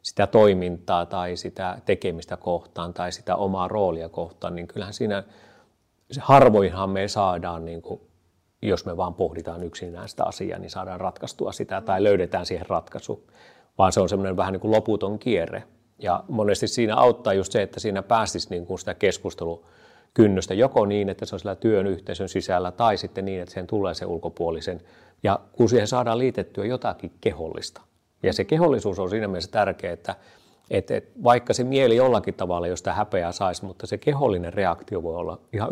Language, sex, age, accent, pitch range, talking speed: Finnish, male, 30-49, native, 90-110 Hz, 175 wpm